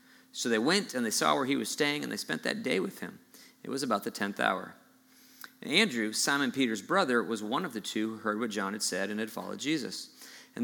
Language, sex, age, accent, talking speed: English, male, 40-59, American, 245 wpm